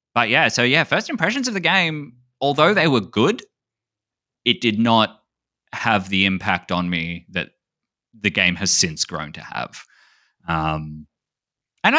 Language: English